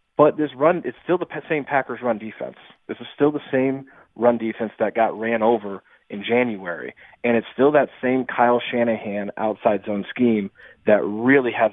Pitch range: 110-135 Hz